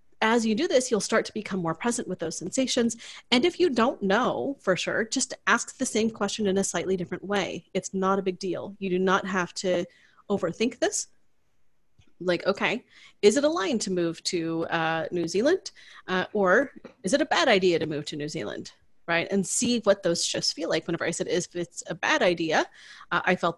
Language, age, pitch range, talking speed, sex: English, 30-49, 180-235 Hz, 220 wpm, female